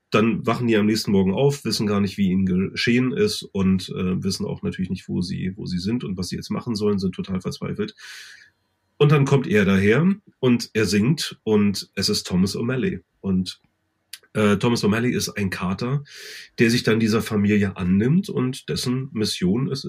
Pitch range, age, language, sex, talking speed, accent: 110-165 Hz, 30-49, German, male, 195 wpm, German